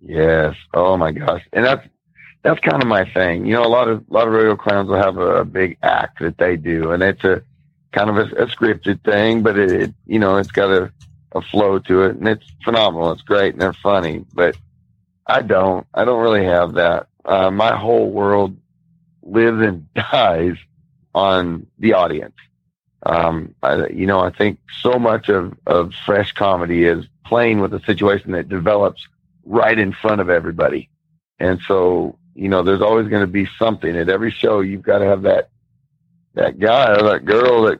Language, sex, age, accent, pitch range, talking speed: English, male, 50-69, American, 90-110 Hz, 200 wpm